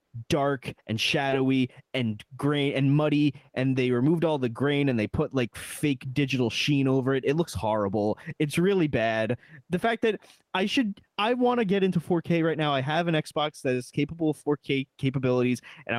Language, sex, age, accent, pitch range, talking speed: English, male, 20-39, American, 130-165 Hz, 195 wpm